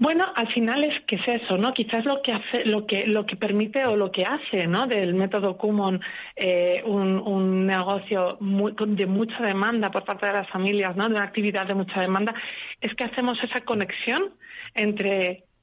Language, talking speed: Spanish, 200 wpm